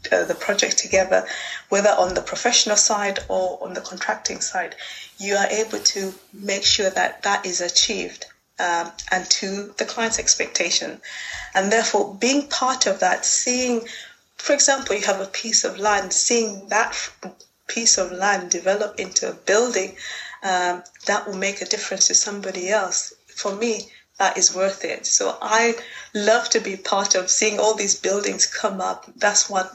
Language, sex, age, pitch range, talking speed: English, female, 20-39, 190-220 Hz, 165 wpm